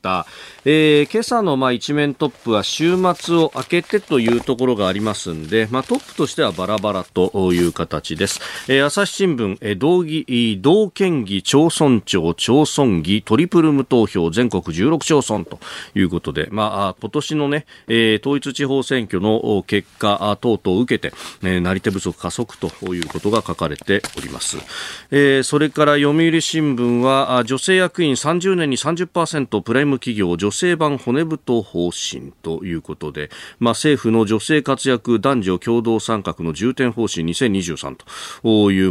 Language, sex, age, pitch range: Japanese, male, 40-59, 95-135 Hz